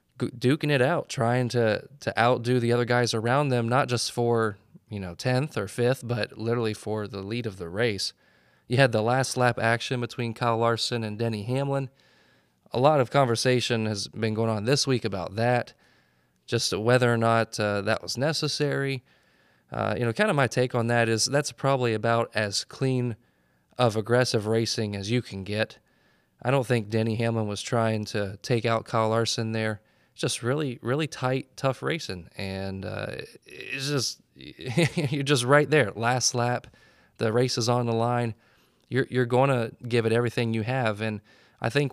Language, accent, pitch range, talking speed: English, American, 110-125 Hz, 185 wpm